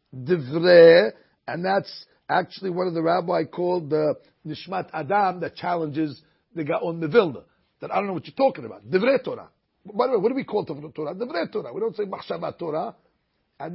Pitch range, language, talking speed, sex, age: 160-215 Hz, Spanish, 190 wpm, male, 60-79